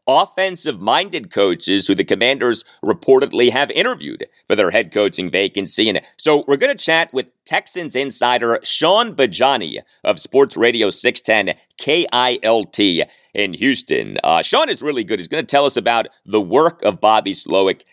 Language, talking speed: English, 155 wpm